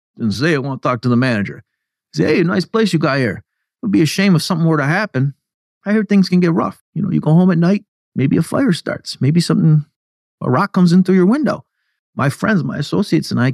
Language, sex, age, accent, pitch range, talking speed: English, male, 40-59, American, 100-135 Hz, 255 wpm